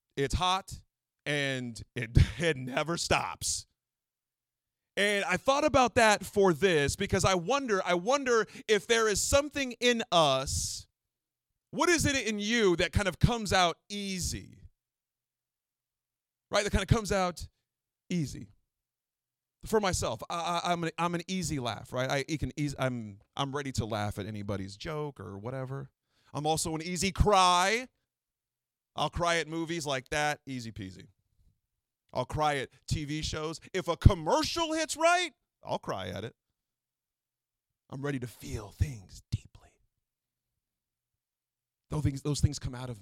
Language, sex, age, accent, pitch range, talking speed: English, male, 40-59, American, 110-170 Hz, 150 wpm